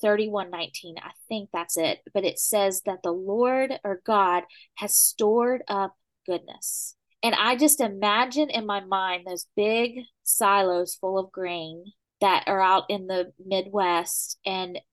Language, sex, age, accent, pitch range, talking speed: English, female, 20-39, American, 185-235 Hz, 150 wpm